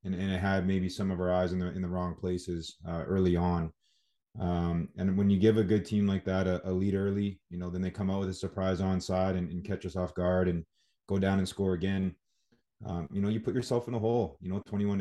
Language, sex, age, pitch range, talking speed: English, male, 20-39, 90-100 Hz, 265 wpm